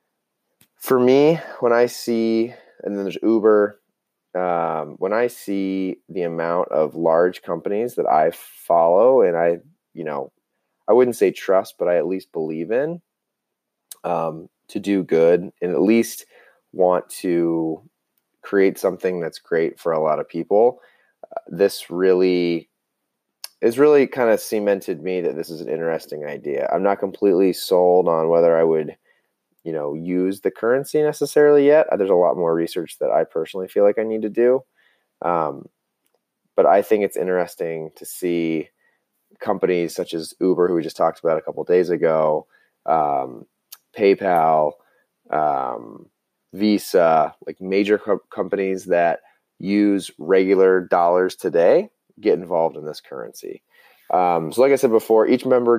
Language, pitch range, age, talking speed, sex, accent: English, 85-115 Hz, 20-39, 155 wpm, male, American